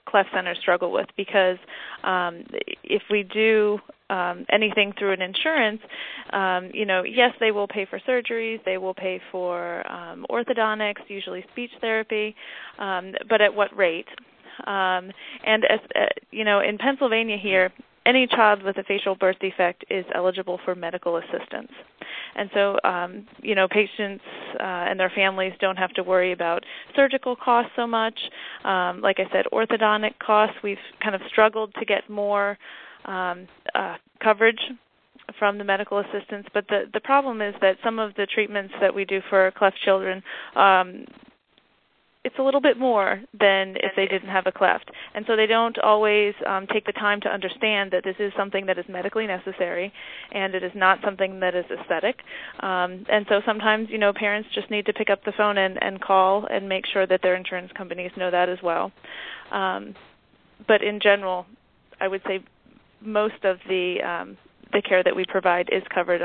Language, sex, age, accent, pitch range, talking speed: English, female, 30-49, American, 185-215 Hz, 180 wpm